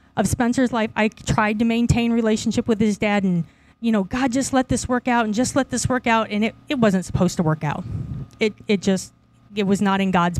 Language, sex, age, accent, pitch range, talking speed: English, female, 30-49, American, 190-235 Hz, 240 wpm